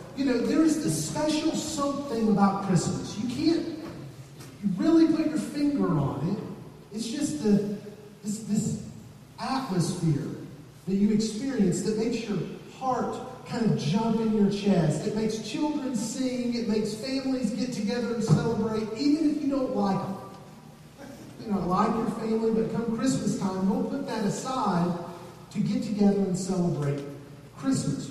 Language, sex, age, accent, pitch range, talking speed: English, male, 40-59, American, 165-225 Hz, 160 wpm